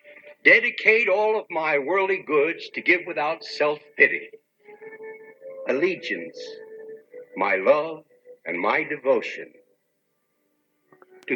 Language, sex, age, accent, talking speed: English, male, 60-79, American, 90 wpm